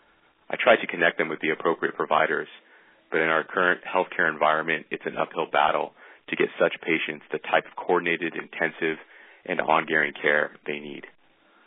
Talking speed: 170 wpm